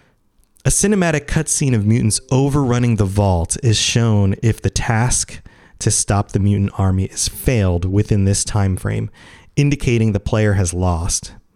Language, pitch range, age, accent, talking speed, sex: English, 100-130 Hz, 30-49, American, 150 wpm, male